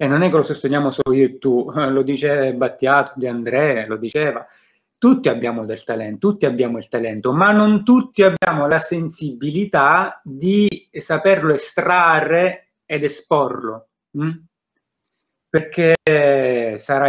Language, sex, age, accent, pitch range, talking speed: Italian, male, 30-49, native, 130-170 Hz, 135 wpm